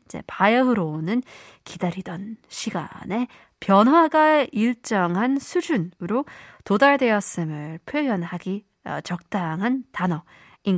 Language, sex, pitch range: Korean, female, 175-260 Hz